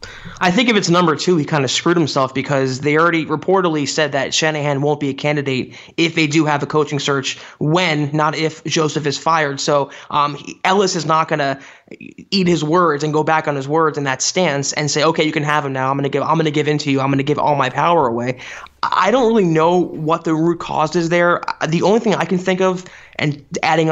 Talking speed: 250 wpm